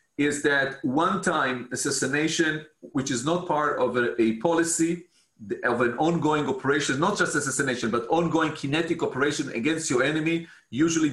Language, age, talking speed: English, 40-59, 150 wpm